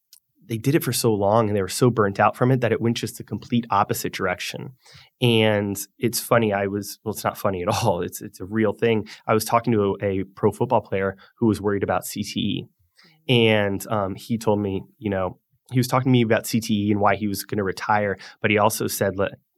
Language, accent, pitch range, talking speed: English, American, 100-120 Hz, 240 wpm